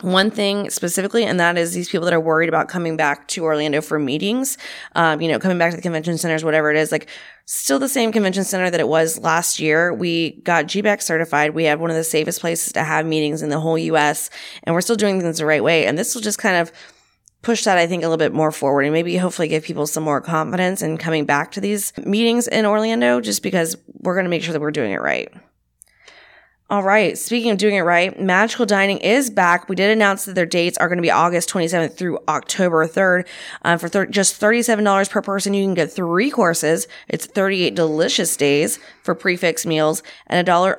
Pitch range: 160-195 Hz